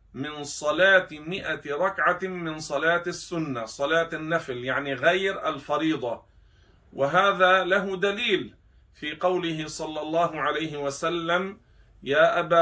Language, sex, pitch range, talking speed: Arabic, male, 145-175 Hz, 110 wpm